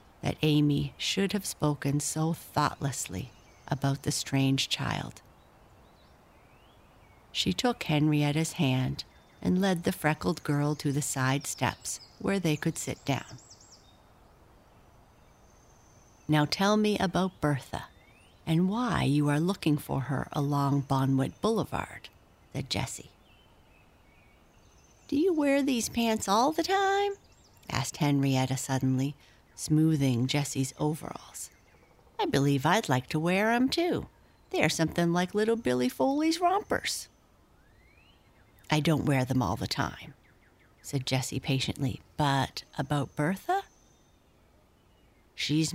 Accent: American